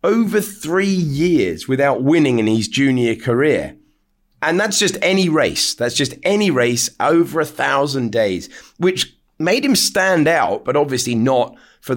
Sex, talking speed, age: male, 155 wpm, 30-49